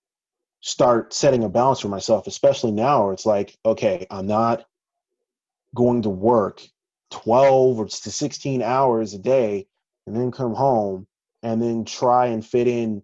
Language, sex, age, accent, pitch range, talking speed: English, male, 30-49, American, 105-135 Hz, 155 wpm